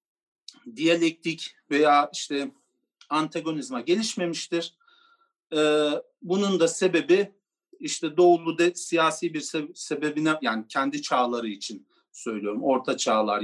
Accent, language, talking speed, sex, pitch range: native, Turkish, 90 wpm, male, 150-230 Hz